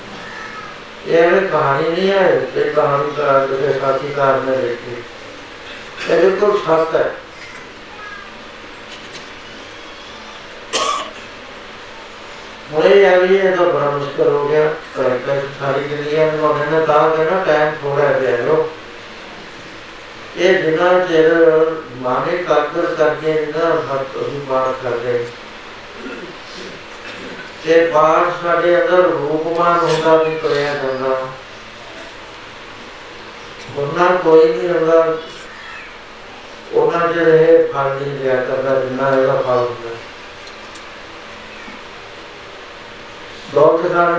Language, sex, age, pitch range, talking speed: Punjabi, male, 60-79, 140-170 Hz, 105 wpm